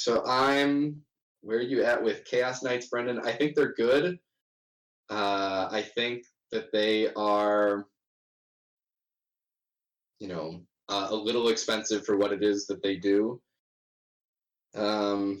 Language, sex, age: English, male, 20-39